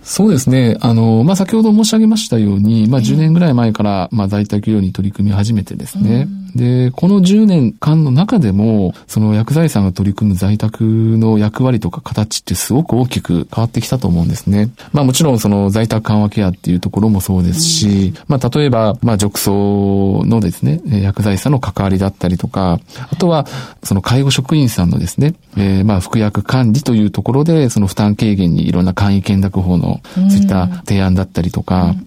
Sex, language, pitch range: male, Japanese, 100-140 Hz